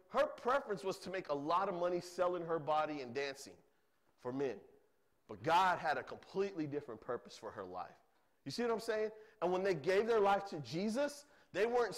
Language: English